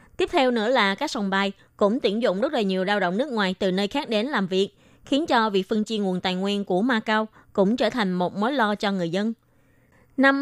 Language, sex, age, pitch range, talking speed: Vietnamese, female, 20-39, 195-245 Hz, 250 wpm